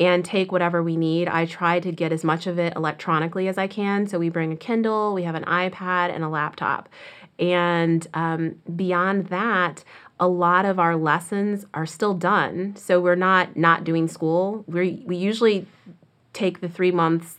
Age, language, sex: 30-49, English, female